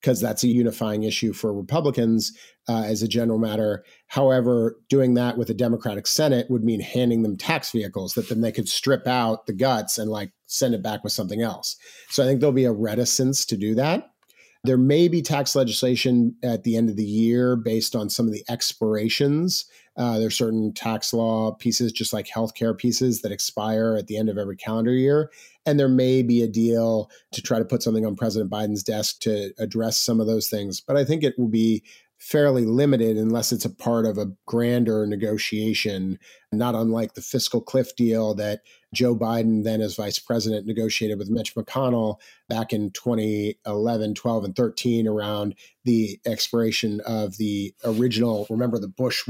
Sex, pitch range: male, 110-125 Hz